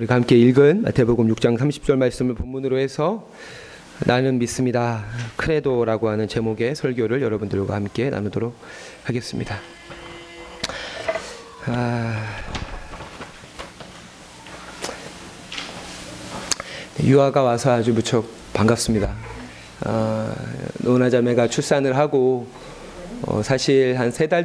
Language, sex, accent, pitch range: Korean, male, native, 110-135 Hz